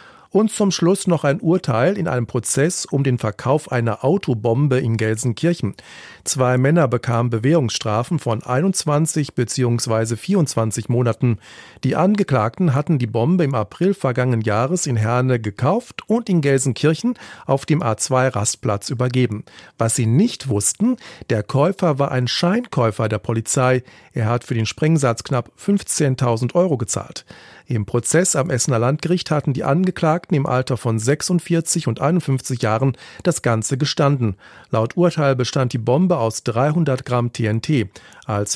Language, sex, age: German, male, 40-59